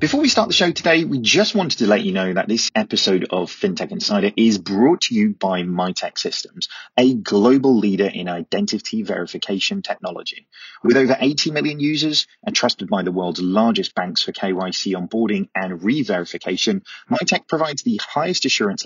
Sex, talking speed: male, 175 wpm